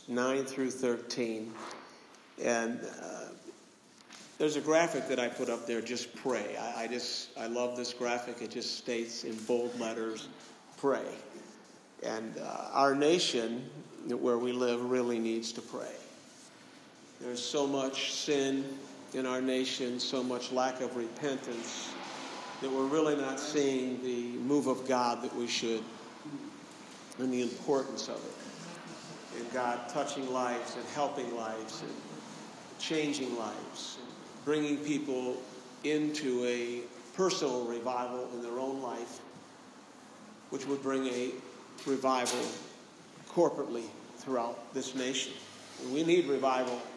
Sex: male